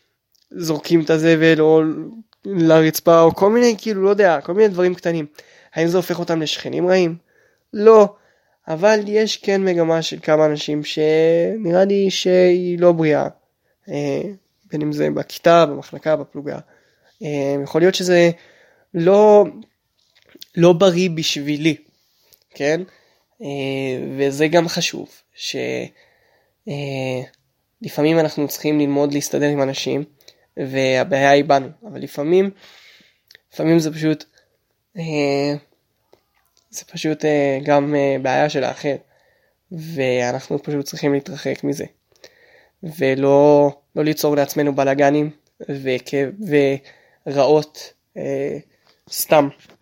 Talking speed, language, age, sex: 105 wpm, Hebrew, 20-39, male